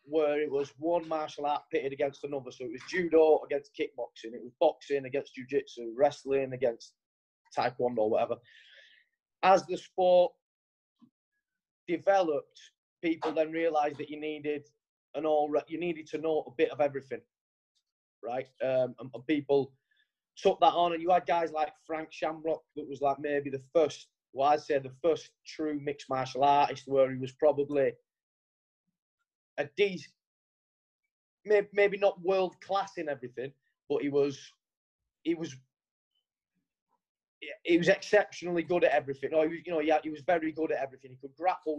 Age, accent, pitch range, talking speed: 30-49, British, 145-180 Hz, 160 wpm